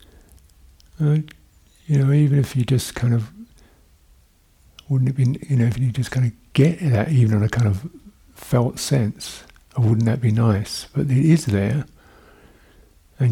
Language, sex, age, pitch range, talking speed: English, male, 60-79, 95-130 Hz, 170 wpm